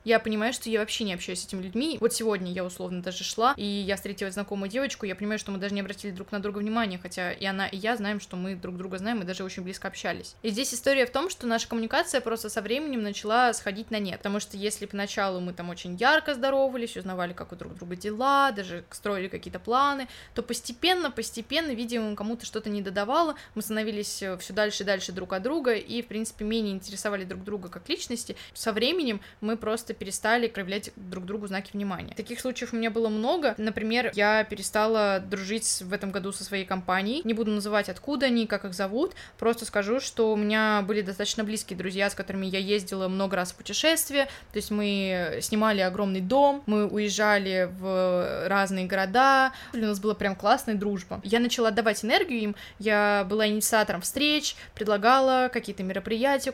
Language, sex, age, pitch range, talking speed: Russian, female, 20-39, 195-235 Hz, 200 wpm